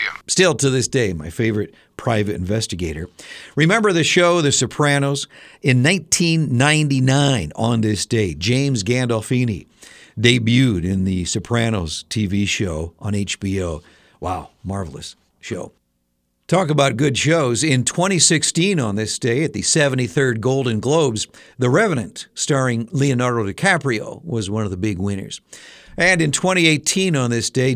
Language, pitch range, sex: Japanese, 110-145 Hz, male